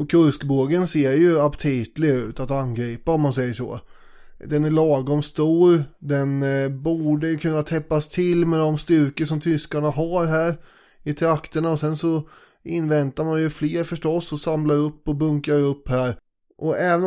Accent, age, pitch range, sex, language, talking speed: native, 20-39, 135-160 Hz, male, Swedish, 170 wpm